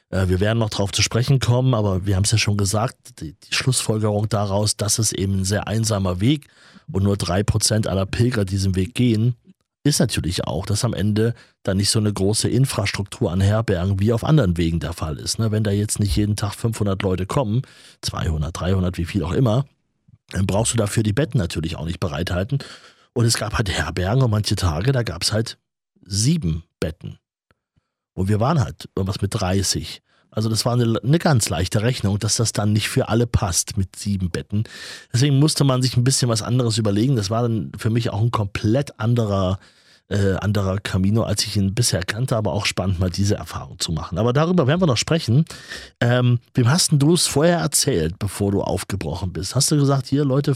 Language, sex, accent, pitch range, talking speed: German, male, German, 100-125 Hz, 205 wpm